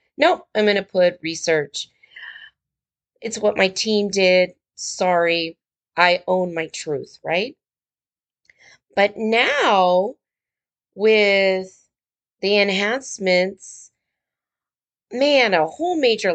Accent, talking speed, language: American, 95 wpm, English